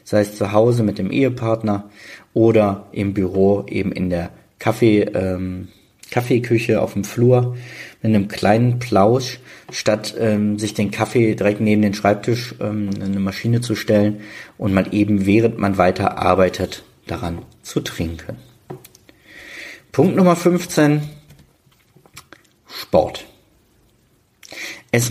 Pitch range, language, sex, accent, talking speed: 100-120 Hz, German, male, German, 125 wpm